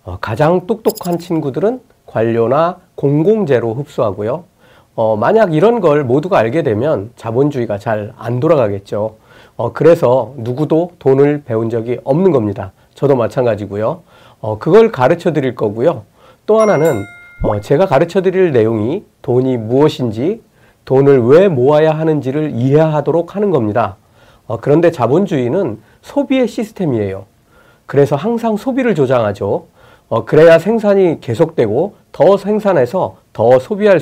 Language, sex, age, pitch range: Korean, male, 40-59, 115-175 Hz